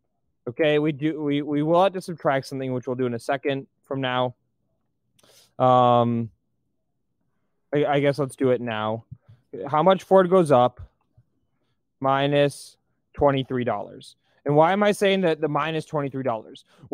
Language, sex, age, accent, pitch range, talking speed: English, male, 20-39, American, 130-165 Hz, 150 wpm